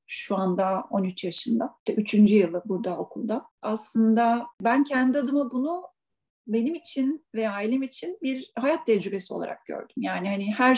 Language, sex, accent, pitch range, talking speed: Turkish, female, native, 205-245 Hz, 145 wpm